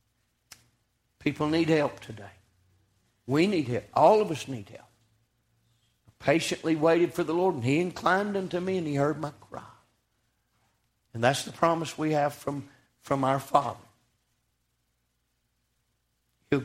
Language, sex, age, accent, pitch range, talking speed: English, male, 60-79, American, 115-160 Hz, 140 wpm